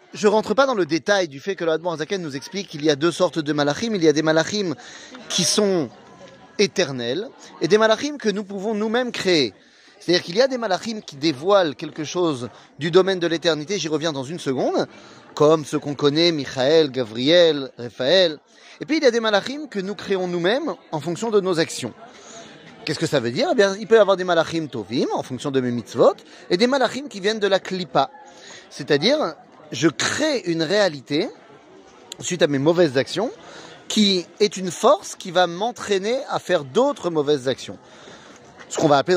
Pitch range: 155-210 Hz